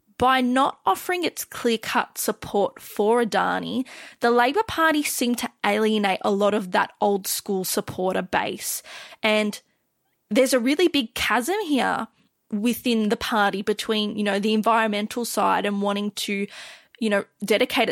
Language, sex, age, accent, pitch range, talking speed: English, female, 20-39, Australian, 205-240 Hz, 150 wpm